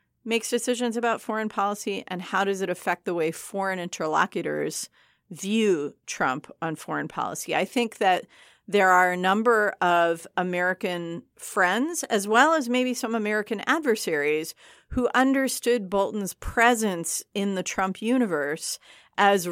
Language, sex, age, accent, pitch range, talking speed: English, female, 40-59, American, 175-220 Hz, 140 wpm